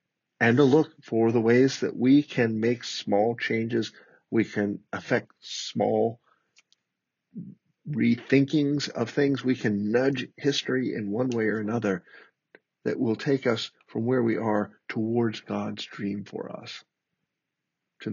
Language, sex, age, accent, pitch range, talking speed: English, male, 50-69, American, 100-120 Hz, 140 wpm